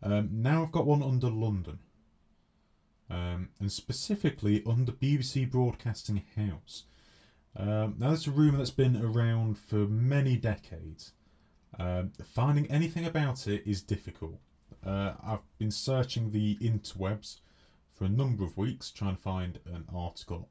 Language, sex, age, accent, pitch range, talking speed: English, male, 30-49, British, 95-125 Hz, 140 wpm